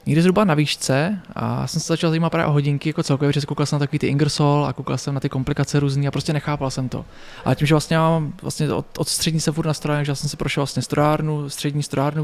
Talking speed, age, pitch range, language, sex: 260 wpm, 20-39, 145-160 Hz, Czech, male